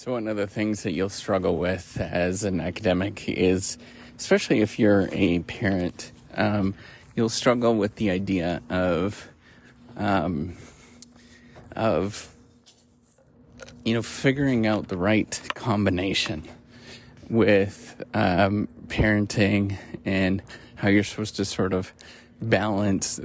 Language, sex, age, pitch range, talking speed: English, male, 30-49, 95-115 Hz, 115 wpm